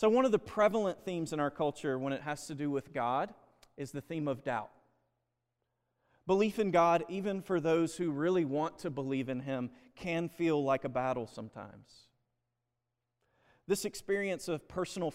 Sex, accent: male, American